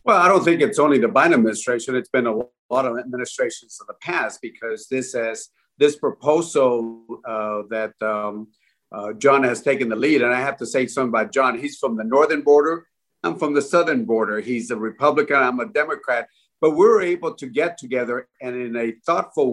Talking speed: 200 wpm